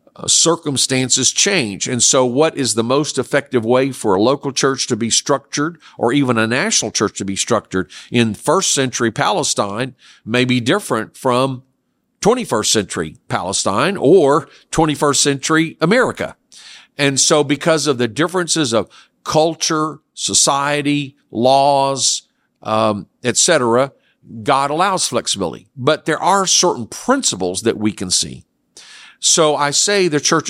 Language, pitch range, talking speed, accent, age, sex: English, 110-145 Hz, 140 wpm, American, 50-69, male